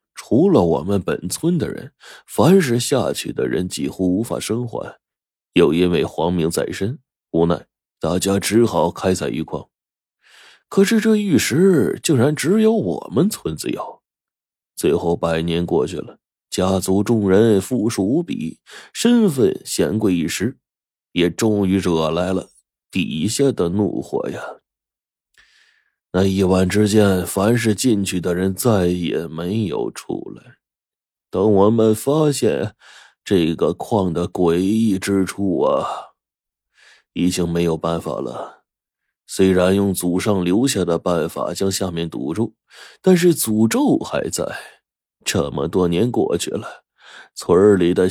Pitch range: 90-115 Hz